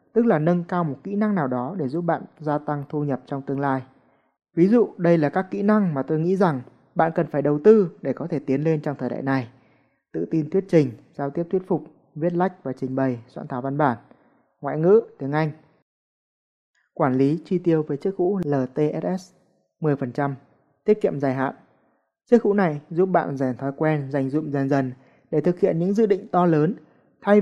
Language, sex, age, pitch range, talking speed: Vietnamese, male, 20-39, 140-180 Hz, 215 wpm